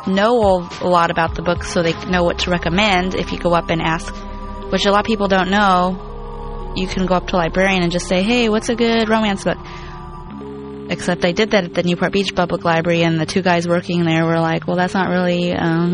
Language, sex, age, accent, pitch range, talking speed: English, female, 20-39, American, 170-200 Hz, 240 wpm